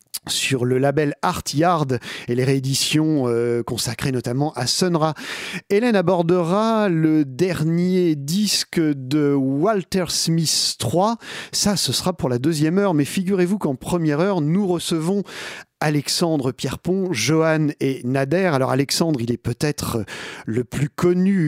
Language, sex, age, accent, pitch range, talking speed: French, male, 40-59, French, 130-180 Hz, 135 wpm